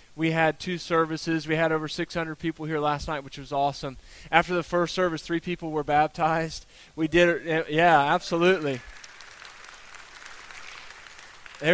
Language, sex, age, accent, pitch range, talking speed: English, male, 20-39, American, 150-180 Hz, 150 wpm